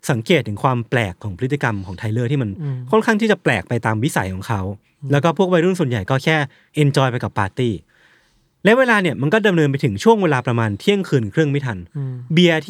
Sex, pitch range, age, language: male, 120-175 Hz, 20-39, Thai